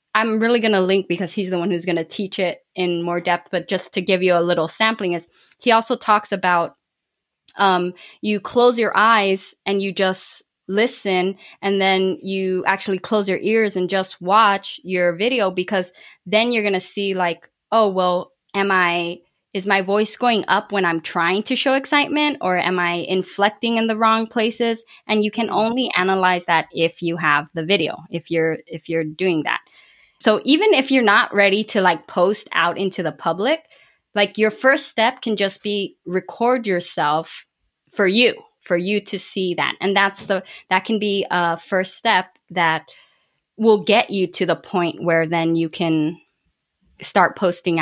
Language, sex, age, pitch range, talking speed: English, female, 20-39, 175-215 Hz, 185 wpm